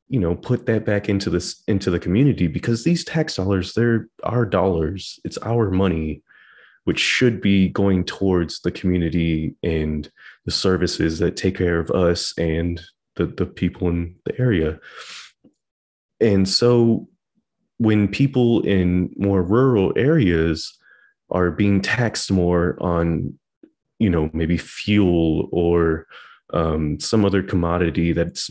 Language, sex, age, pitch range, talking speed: English, male, 20-39, 85-110 Hz, 135 wpm